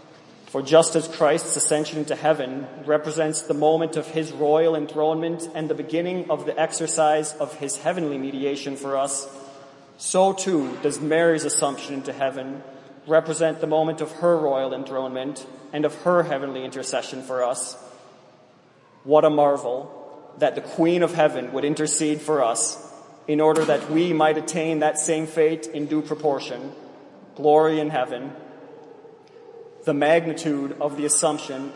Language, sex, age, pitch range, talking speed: English, male, 30-49, 140-160 Hz, 150 wpm